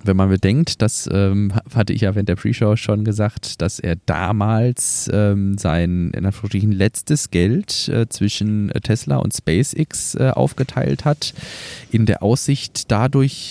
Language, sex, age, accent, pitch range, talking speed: German, male, 20-39, German, 90-125 Hz, 145 wpm